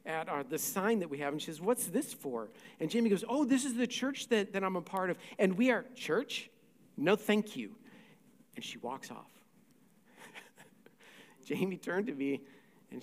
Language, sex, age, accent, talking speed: English, male, 50-69, American, 200 wpm